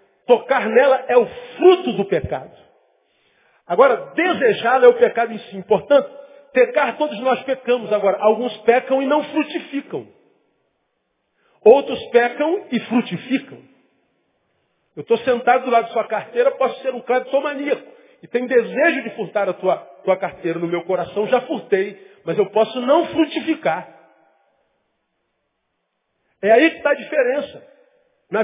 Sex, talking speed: male, 140 wpm